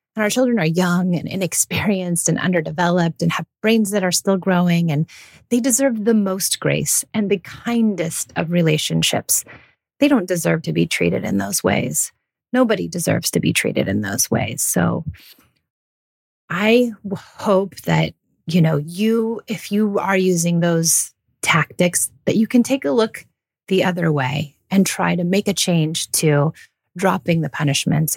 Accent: American